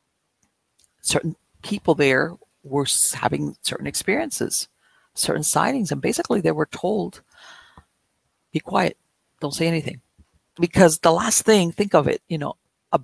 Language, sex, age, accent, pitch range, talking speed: English, female, 50-69, American, 145-190 Hz, 135 wpm